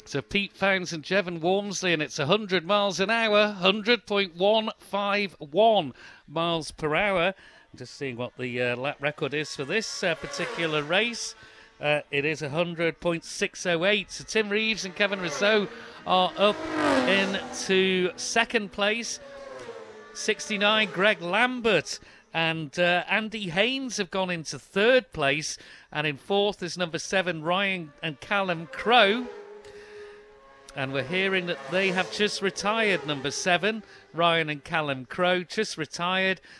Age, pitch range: 40-59, 160-205 Hz